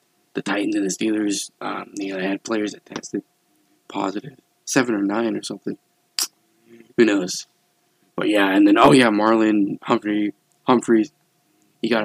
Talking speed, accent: 160 wpm, American